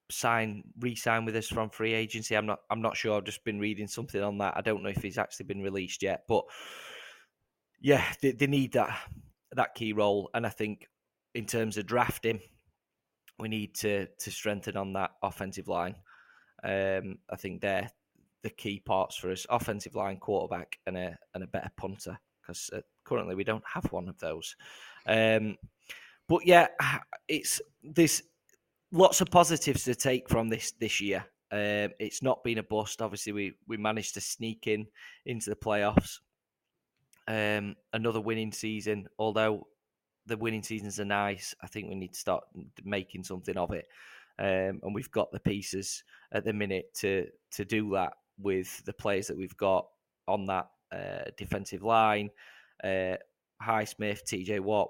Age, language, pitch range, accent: 20-39, English, 100-115 Hz, British